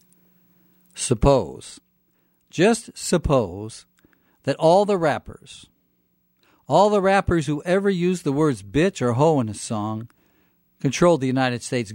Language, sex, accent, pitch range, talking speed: English, male, American, 110-165 Hz, 125 wpm